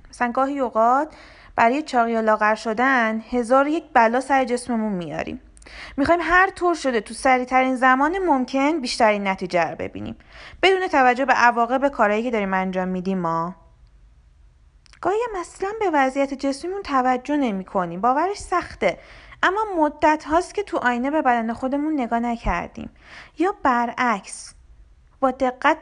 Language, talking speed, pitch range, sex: Persian, 145 wpm, 210-280 Hz, female